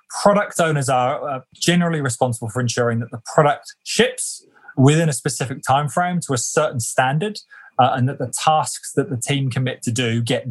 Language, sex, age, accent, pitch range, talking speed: English, male, 20-39, British, 115-145 Hz, 185 wpm